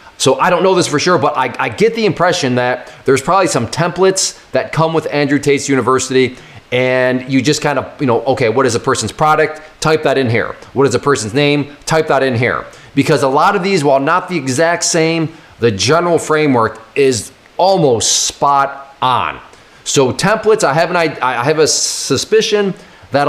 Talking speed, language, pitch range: 200 wpm, English, 130-165 Hz